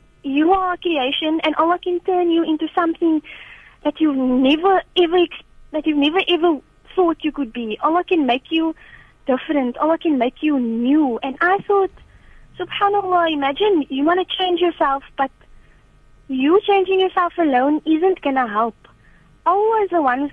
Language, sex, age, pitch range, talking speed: English, female, 20-39, 285-375 Hz, 165 wpm